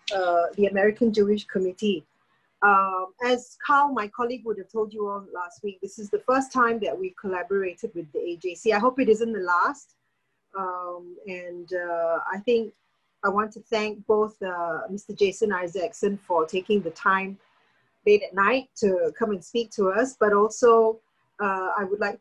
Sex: female